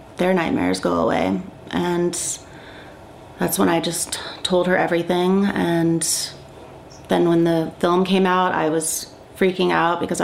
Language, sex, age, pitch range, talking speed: English, female, 30-49, 160-180 Hz, 140 wpm